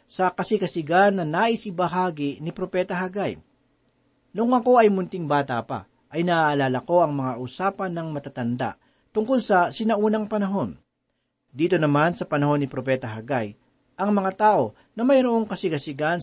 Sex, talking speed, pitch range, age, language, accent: male, 140 wpm, 145-200 Hz, 40-59, Filipino, native